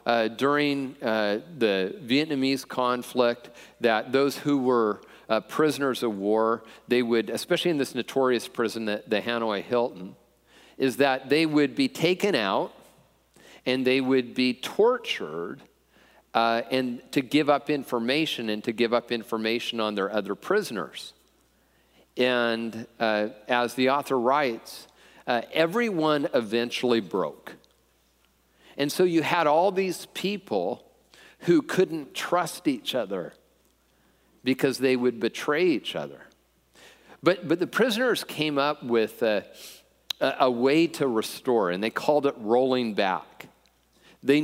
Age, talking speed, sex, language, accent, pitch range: 40-59, 135 wpm, male, English, American, 115-145 Hz